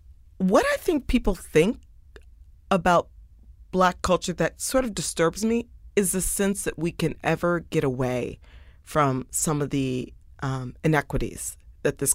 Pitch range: 125-160 Hz